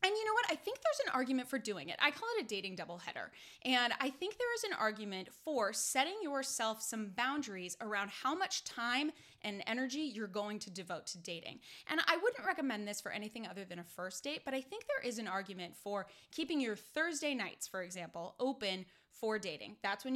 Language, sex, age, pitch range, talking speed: English, female, 10-29, 195-275 Hz, 215 wpm